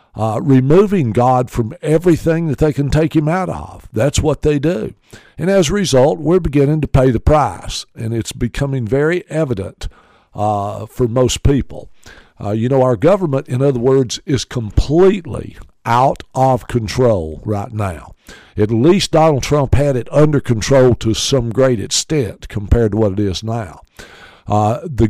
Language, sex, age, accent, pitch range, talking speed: English, male, 60-79, American, 110-150 Hz, 165 wpm